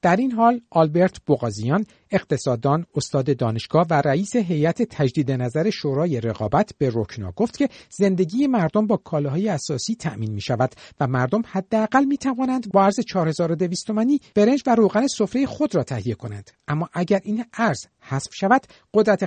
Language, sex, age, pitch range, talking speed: Persian, male, 50-69, 135-220 Hz, 160 wpm